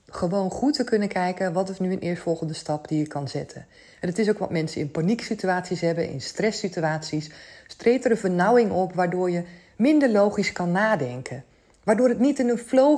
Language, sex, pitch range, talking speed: Dutch, female, 175-235 Hz, 210 wpm